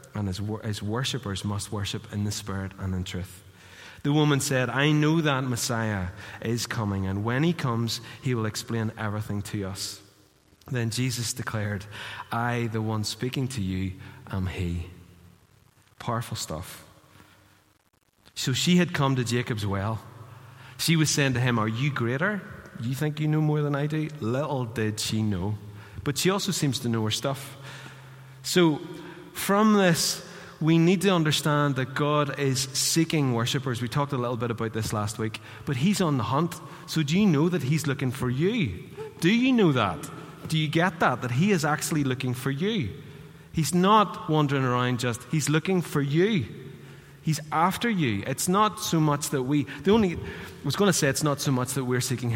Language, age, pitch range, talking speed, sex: English, 30-49, 110-155 Hz, 185 wpm, male